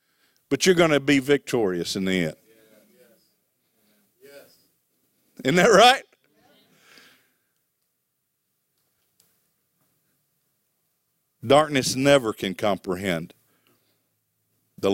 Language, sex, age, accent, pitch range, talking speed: English, male, 50-69, American, 135-165 Hz, 70 wpm